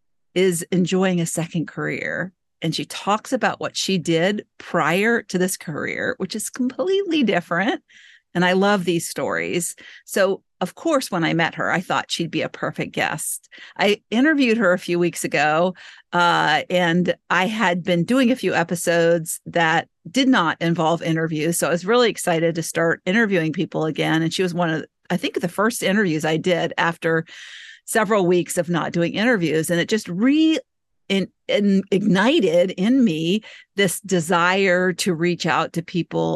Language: English